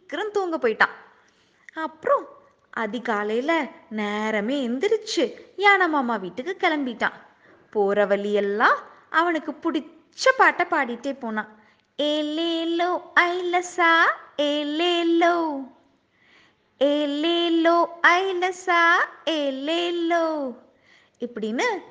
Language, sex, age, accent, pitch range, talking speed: Tamil, female, 20-39, native, 235-345 Hz, 40 wpm